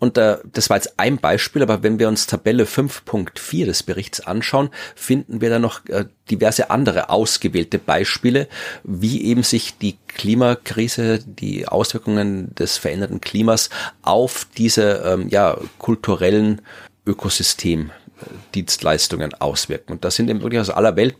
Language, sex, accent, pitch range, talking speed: German, male, German, 95-115 Hz, 140 wpm